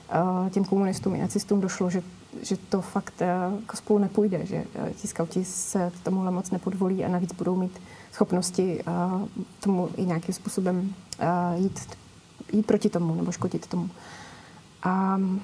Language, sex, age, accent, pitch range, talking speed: Czech, female, 20-39, native, 185-210 Hz, 140 wpm